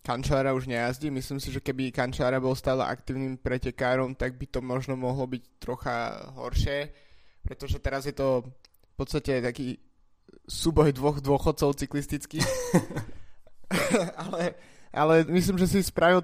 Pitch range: 125-145 Hz